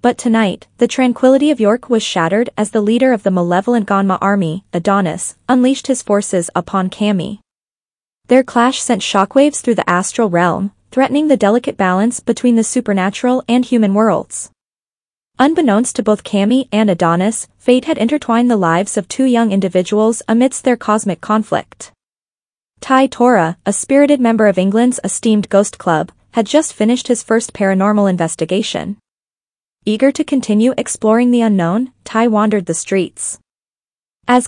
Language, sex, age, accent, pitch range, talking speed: English, female, 20-39, American, 195-245 Hz, 150 wpm